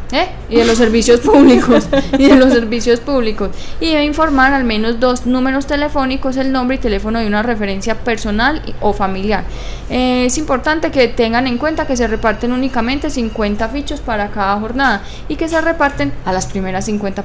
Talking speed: 185 wpm